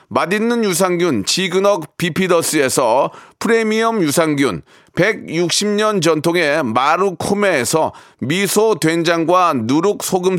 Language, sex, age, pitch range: Korean, male, 40-59, 175-220 Hz